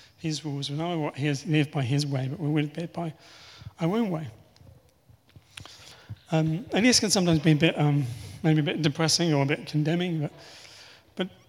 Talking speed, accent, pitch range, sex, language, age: 195 wpm, British, 145-165 Hz, male, English, 30-49